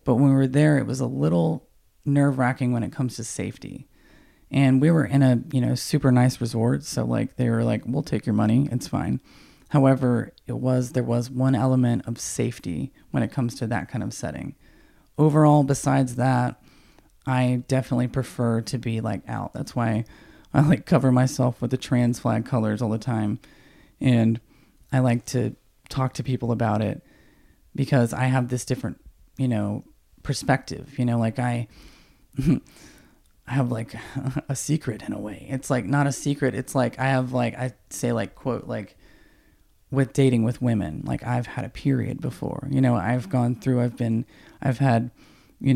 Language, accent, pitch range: English, American, 115-135 Hz